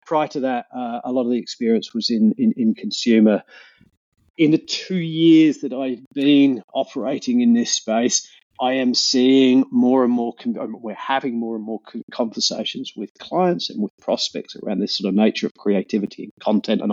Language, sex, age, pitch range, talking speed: English, male, 40-59, 115-160 Hz, 185 wpm